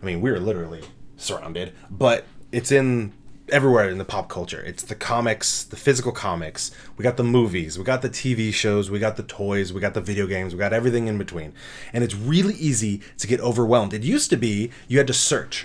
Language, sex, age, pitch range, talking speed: English, male, 20-39, 100-135 Hz, 220 wpm